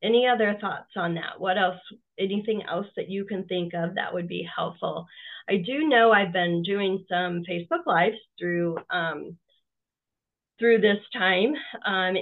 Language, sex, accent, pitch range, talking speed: English, female, American, 170-210 Hz, 160 wpm